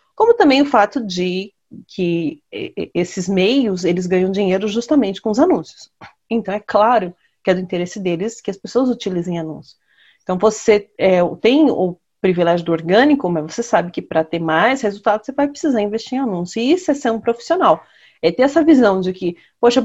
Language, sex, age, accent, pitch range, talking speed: Portuguese, female, 30-49, Brazilian, 175-255 Hz, 195 wpm